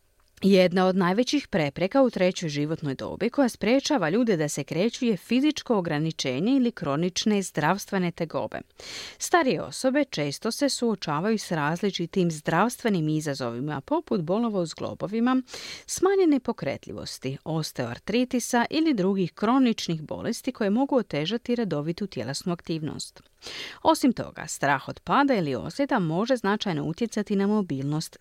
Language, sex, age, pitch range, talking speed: Croatian, female, 40-59, 160-250 Hz, 120 wpm